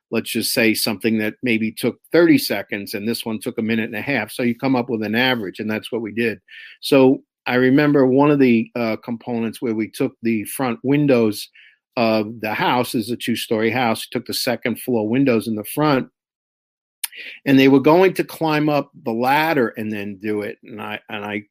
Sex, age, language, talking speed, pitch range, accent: male, 50-69, English, 215 wpm, 110-125 Hz, American